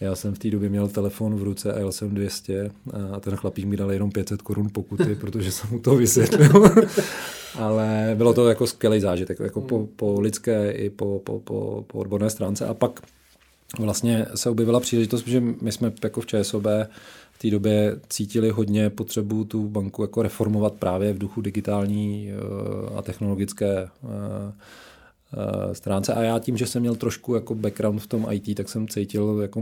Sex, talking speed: male, 175 wpm